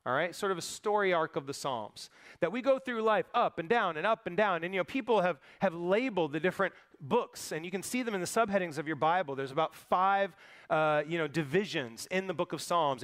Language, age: English, 30-49